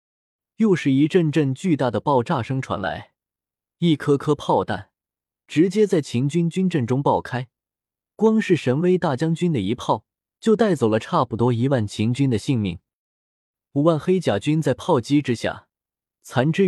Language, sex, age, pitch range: Chinese, male, 20-39, 115-170 Hz